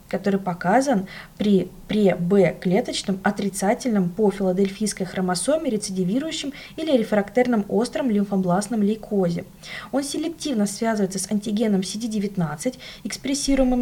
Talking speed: 90 wpm